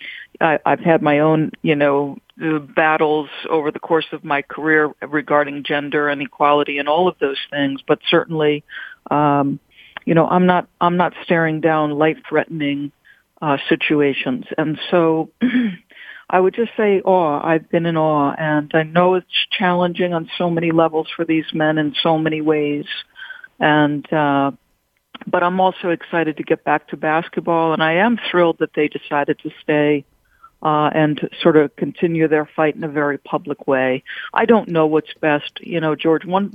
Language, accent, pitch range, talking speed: English, American, 145-170 Hz, 175 wpm